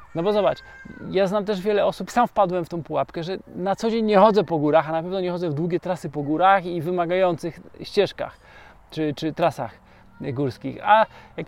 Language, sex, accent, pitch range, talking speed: Polish, male, native, 155-190 Hz, 210 wpm